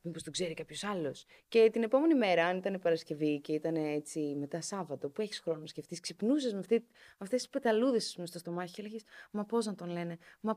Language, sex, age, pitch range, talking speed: Greek, female, 20-39, 150-200 Hz, 215 wpm